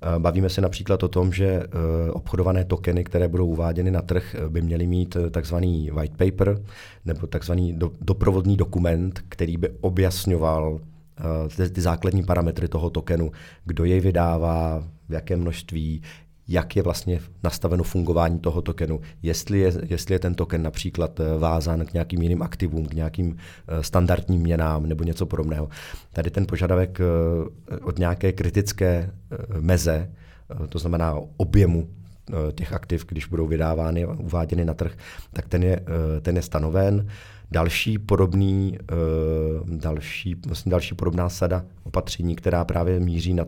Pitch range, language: 85-95 Hz, Czech